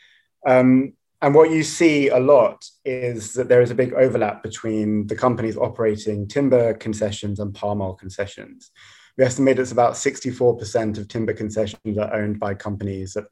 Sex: male